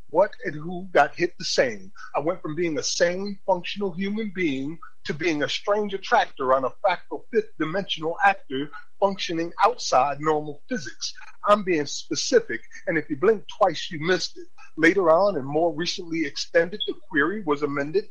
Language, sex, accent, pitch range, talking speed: English, male, American, 165-260 Hz, 170 wpm